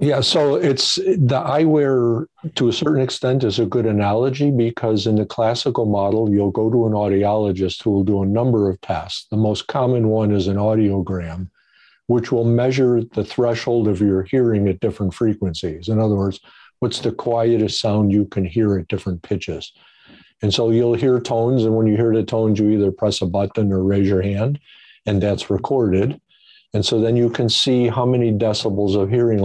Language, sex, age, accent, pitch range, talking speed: English, male, 50-69, American, 95-120 Hz, 195 wpm